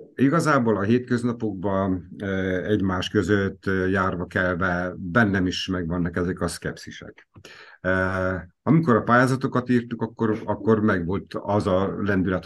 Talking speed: 110 wpm